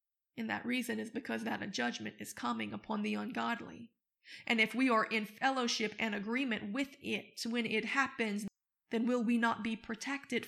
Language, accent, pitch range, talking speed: English, American, 220-265 Hz, 185 wpm